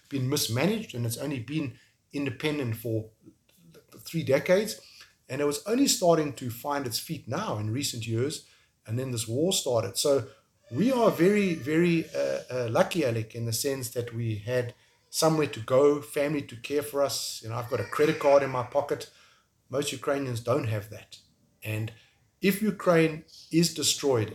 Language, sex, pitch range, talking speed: English, male, 115-160 Hz, 175 wpm